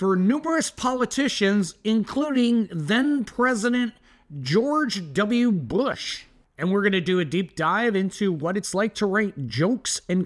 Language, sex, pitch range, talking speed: English, male, 155-225 Hz, 140 wpm